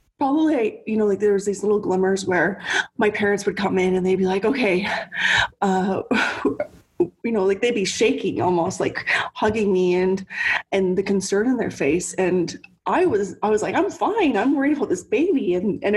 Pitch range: 185-215 Hz